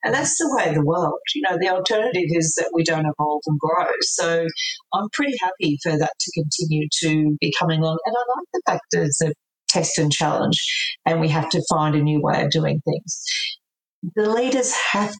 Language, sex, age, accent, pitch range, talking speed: English, female, 40-59, Australian, 155-180 Hz, 215 wpm